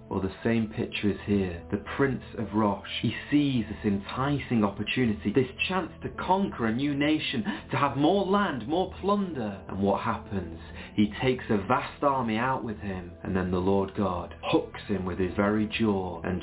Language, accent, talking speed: English, British, 185 wpm